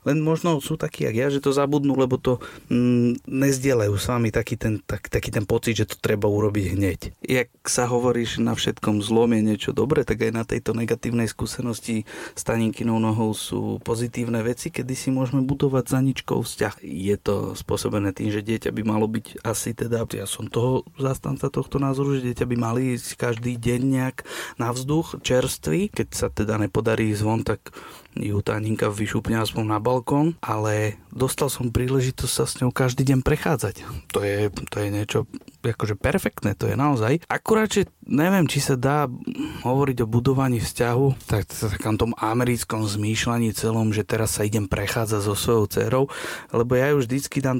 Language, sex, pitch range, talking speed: Slovak, male, 110-130 Hz, 175 wpm